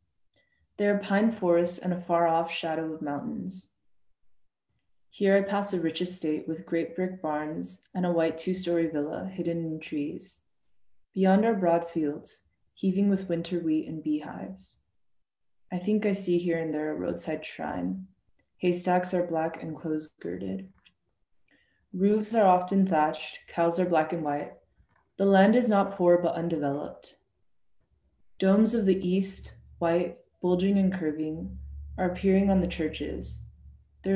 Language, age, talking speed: English, 20-39, 150 wpm